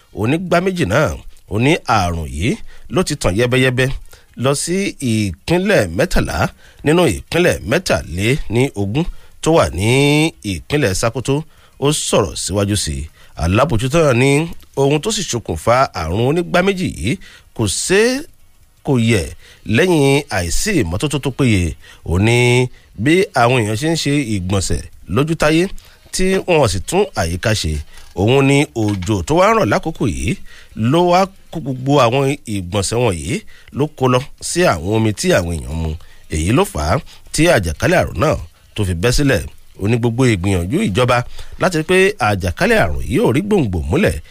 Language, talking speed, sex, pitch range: English, 135 wpm, male, 95-150 Hz